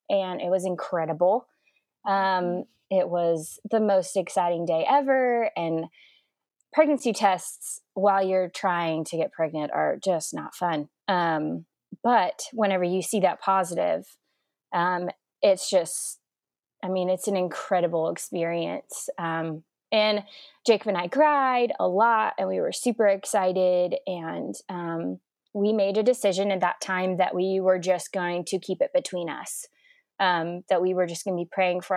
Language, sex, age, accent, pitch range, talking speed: English, female, 20-39, American, 175-210 Hz, 155 wpm